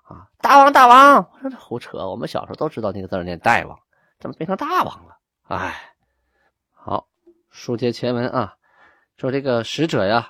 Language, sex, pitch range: Chinese, male, 110-175 Hz